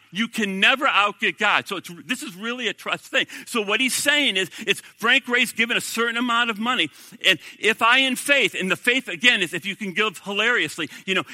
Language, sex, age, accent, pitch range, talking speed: English, male, 50-69, American, 165-235 Hz, 235 wpm